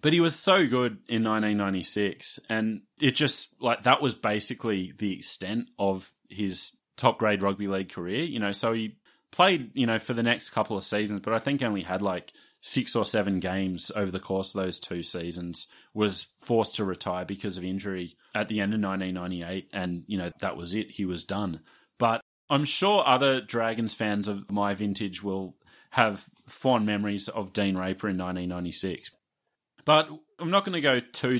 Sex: male